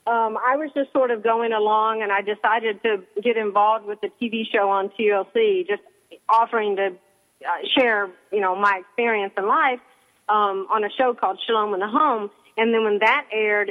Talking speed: 195 wpm